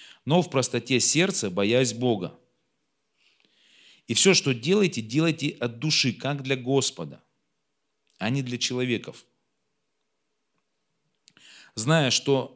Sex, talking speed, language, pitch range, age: male, 105 wpm, Russian, 115-160 Hz, 40-59